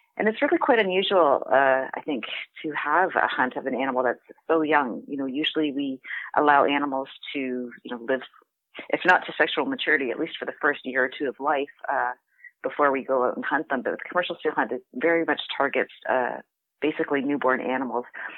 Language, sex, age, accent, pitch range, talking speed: English, female, 30-49, American, 135-160 Hz, 210 wpm